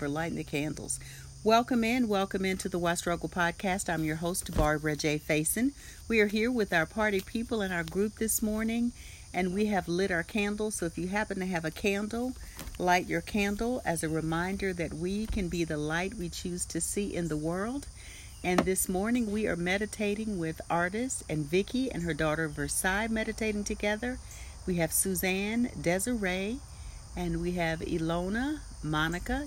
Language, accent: English, American